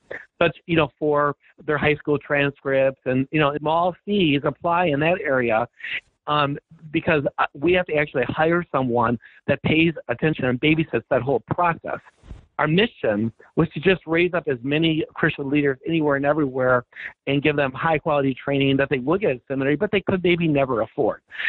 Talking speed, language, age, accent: 180 wpm, English, 50-69, American